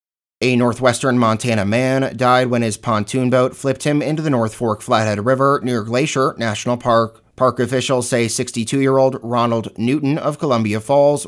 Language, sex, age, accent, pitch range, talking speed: English, male, 30-49, American, 115-135 Hz, 160 wpm